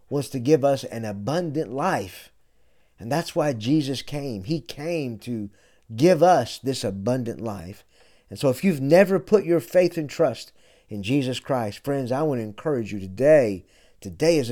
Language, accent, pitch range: English, American, 110-155 Hz